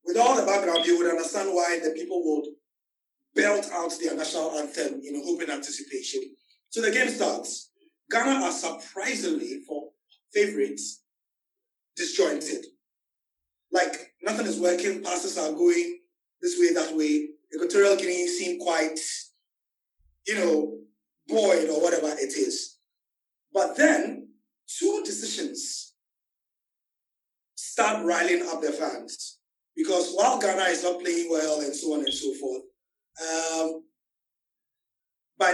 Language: English